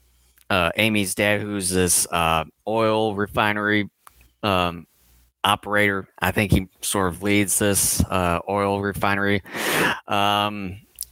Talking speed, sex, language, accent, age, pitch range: 115 wpm, male, English, American, 30-49, 90-105 Hz